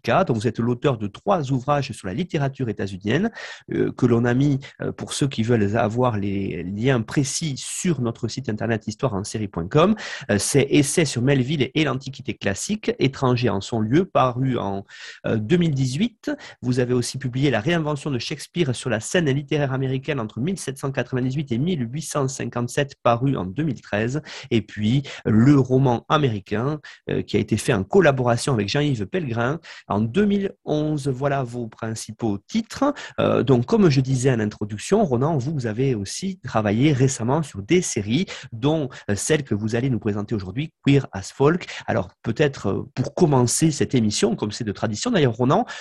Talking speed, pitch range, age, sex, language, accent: 180 wpm, 115-150 Hz, 30-49, male, French, French